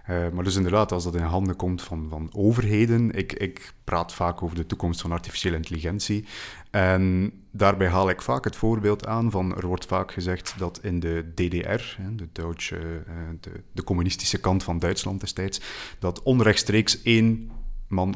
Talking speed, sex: 165 wpm, male